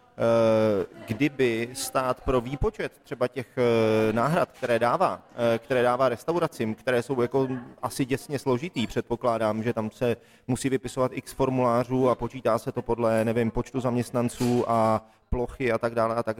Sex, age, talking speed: male, 30-49, 150 wpm